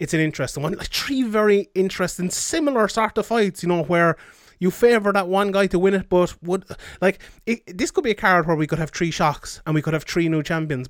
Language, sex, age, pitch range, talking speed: English, male, 20-39, 145-175 Hz, 250 wpm